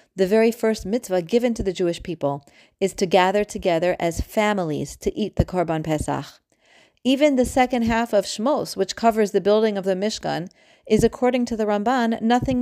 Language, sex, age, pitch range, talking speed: English, female, 40-59, 170-225 Hz, 185 wpm